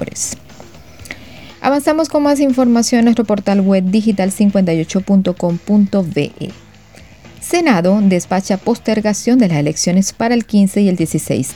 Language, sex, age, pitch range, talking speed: Spanish, female, 40-59, 170-230 Hz, 115 wpm